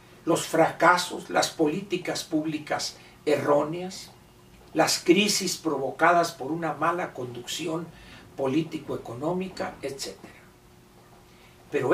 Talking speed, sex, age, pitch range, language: 80 wpm, male, 60-79, 150-190 Hz, Spanish